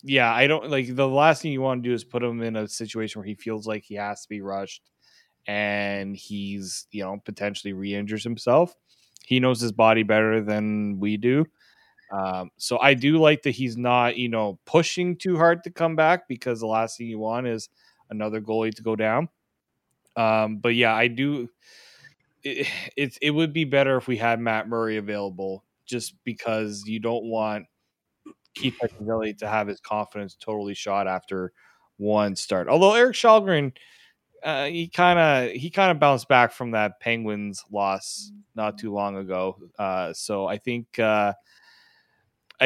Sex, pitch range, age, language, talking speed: male, 105-130 Hz, 20-39, English, 175 wpm